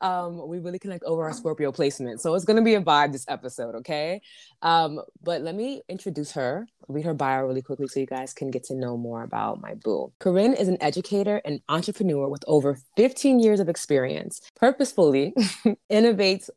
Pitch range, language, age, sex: 155-210 Hz, English, 20-39, female